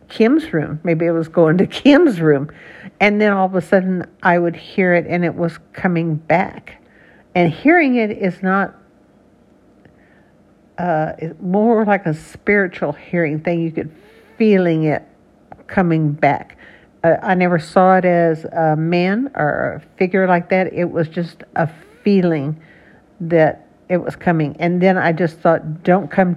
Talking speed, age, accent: 160 wpm, 60-79, American